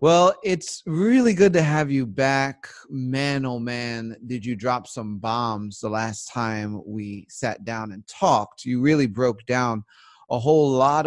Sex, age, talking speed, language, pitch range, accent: male, 30-49, 170 wpm, English, 120-155 Hz, American